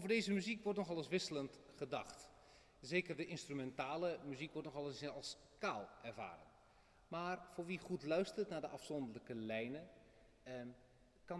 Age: 40-59